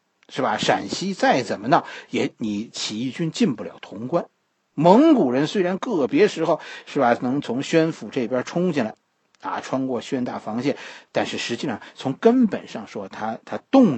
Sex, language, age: male, Chinese, 50-69